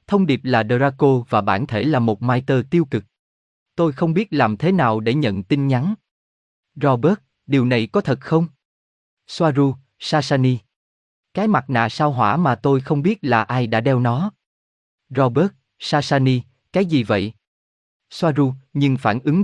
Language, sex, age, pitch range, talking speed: Vietnamese, male, 20-39, 110-155 Hz, 165 wpm